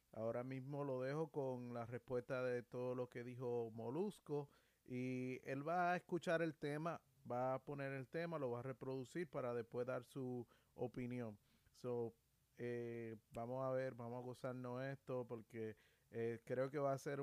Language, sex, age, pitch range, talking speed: Spanish, male, 30-49, 120-140 Hz, 175 wpm